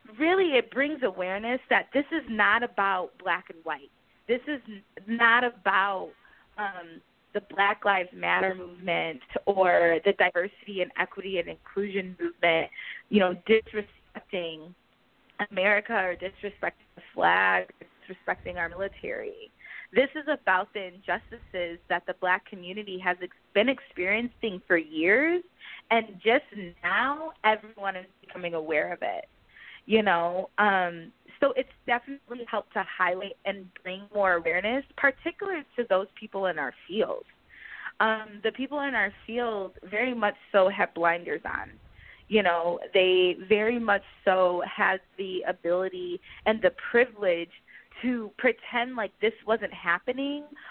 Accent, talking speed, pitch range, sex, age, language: American, 135 wpm, 180-235 Hz, female, 20-39, English